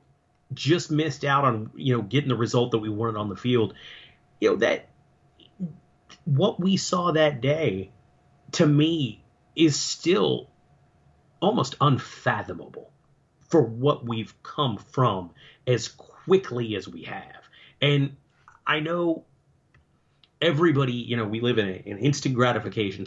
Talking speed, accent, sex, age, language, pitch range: 135 wpm, American, male, 40-59, English, 115-150 Hz